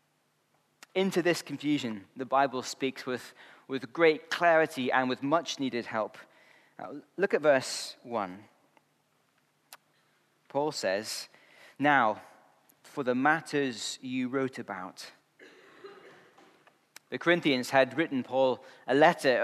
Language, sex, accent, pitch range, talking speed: English, male, British, 130-160 Hz, 105 wpm